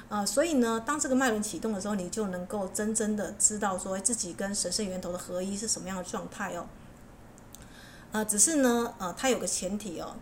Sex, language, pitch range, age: female, Chinese, 195-235 Hz, 30-49